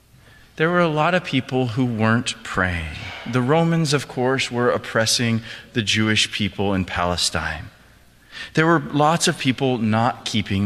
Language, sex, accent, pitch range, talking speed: English, male, American, 105-150 Hz, 150 wpm